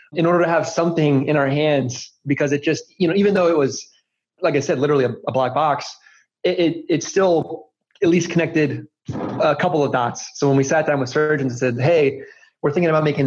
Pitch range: 130-155 Hz